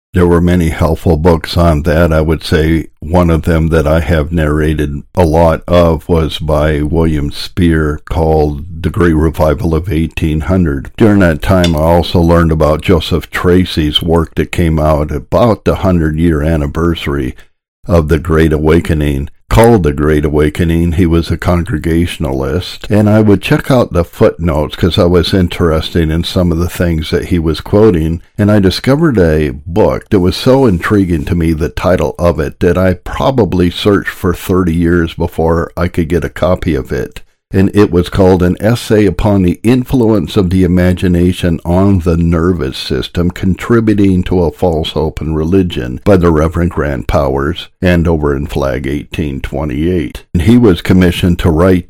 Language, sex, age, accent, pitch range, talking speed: English, male, 60-79, American, 80-90 Hz, 170 wpm